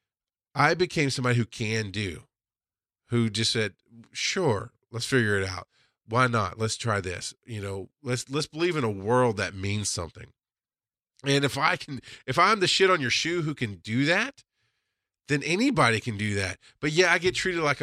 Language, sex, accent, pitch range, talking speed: English, male, American, 100-135 Hz, 190 wpm